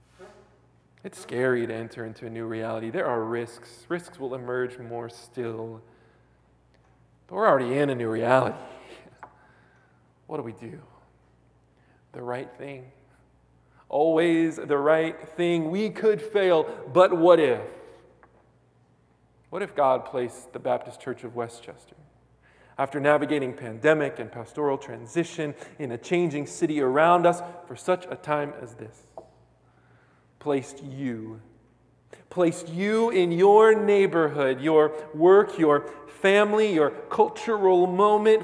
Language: English